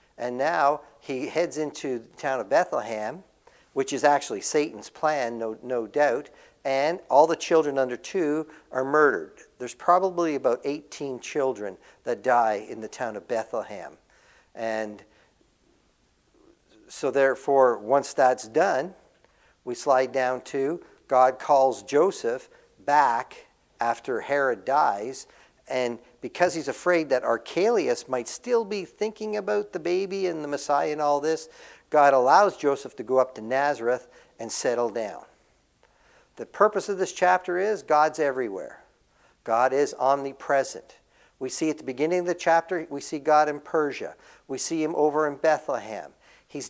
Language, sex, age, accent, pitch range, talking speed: English, male, 50-69, American, 135-180 Hz, 150 wpm